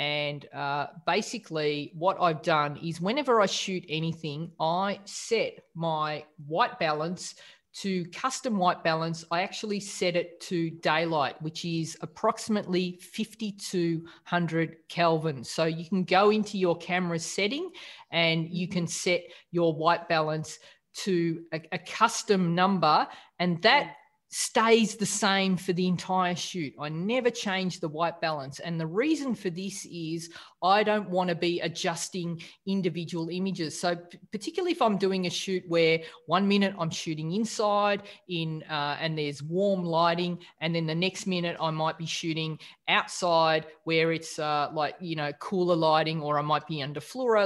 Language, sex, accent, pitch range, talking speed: English, female, Australian, 160-195 Hz, 155 wpm